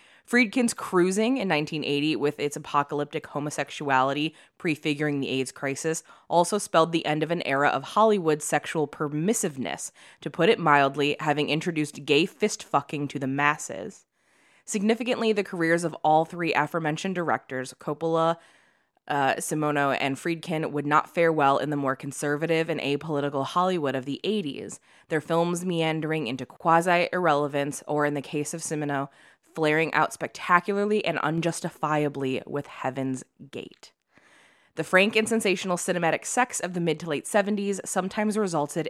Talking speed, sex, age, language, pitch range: 140 wpm, female, 20-39, English, 145-180 Hz